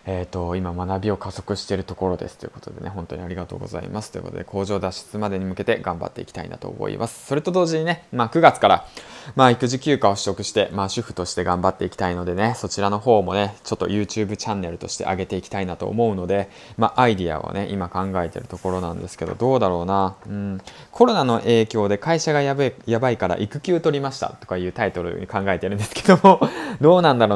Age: 20-39